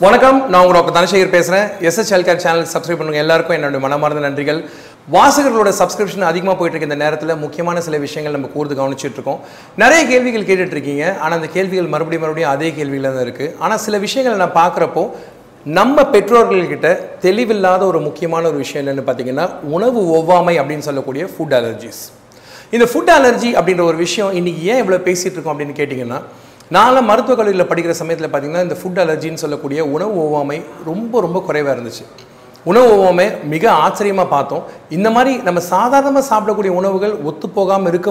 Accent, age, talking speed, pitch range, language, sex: native, 40-59, 160 wpm, 150-205 Hz, Tamil, male